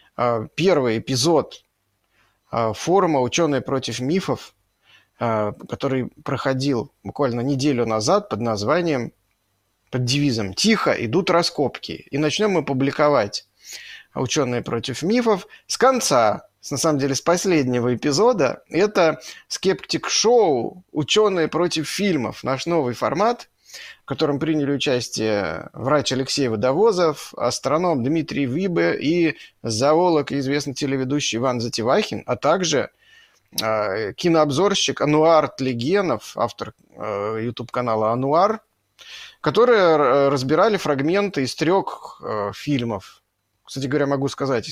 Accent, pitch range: native, 125-170 Hz